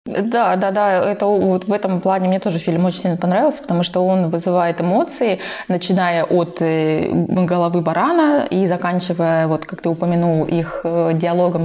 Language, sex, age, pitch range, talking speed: Russian, female, 20-39, 175-215 Hz, 160 wpm